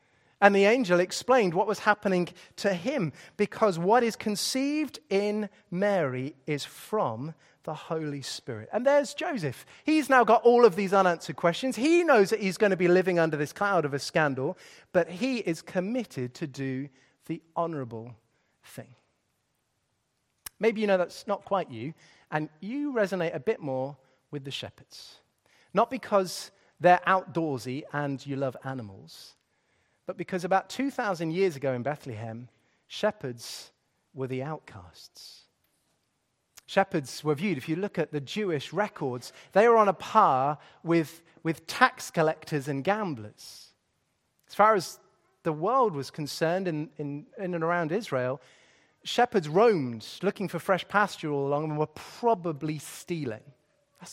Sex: male